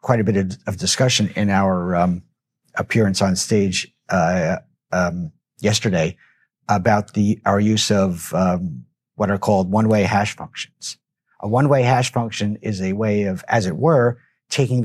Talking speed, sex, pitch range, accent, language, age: 155 wpm, male, 100-125 Hz, American, English, 50-69